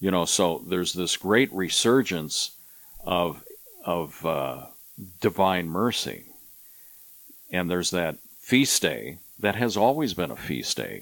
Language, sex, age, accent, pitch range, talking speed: English, male, 50-69, American, 80-100 Hz, 130 wpm